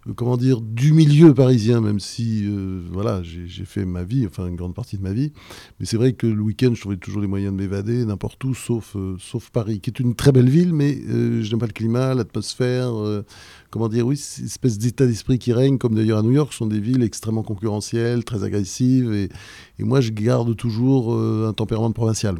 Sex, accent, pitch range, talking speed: male, French, 100-130 Hz, 235 wpm